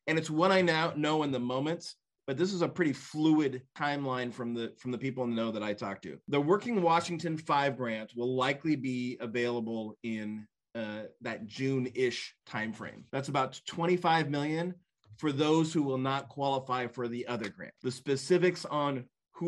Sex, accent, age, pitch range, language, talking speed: male, American, 30-49, 125-155 Hz, English, 180 wpm